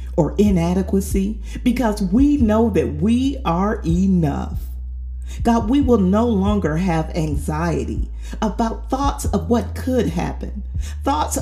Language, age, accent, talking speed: English, 40-59, American, 120 wpm